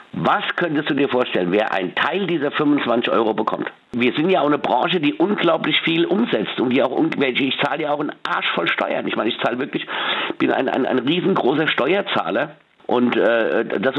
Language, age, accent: German, 50-69, German